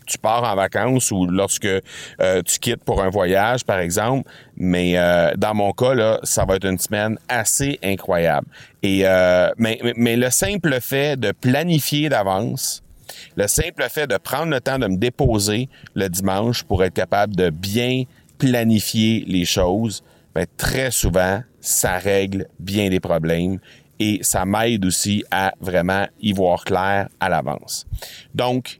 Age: 40-59